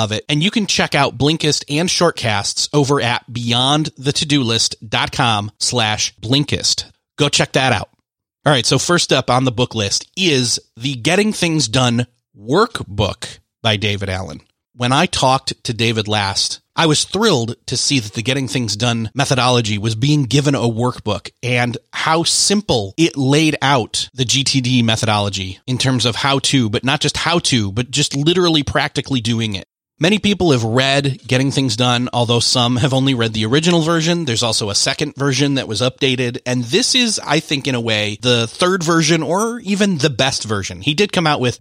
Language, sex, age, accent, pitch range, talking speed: English, male, 30-49, American, 115-150 Hz, 185 wpm